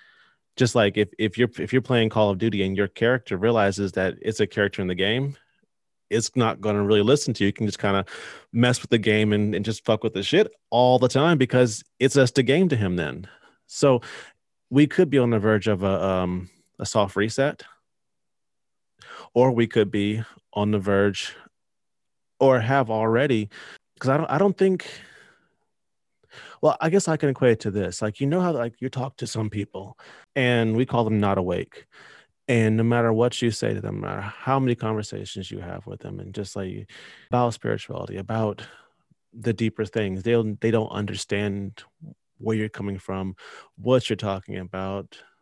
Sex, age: male, 30-49